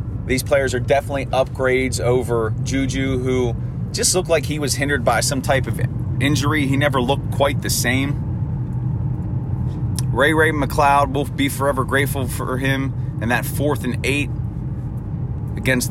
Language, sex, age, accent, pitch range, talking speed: English, male, 30-49, American, 120-140 Hz, 150 wpm